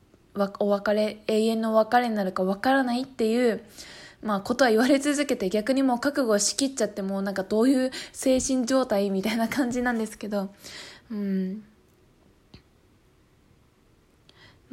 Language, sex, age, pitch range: Japanese, female, 20-39, 205-250 Hz